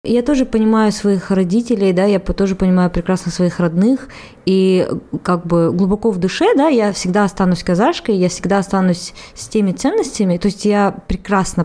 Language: Russian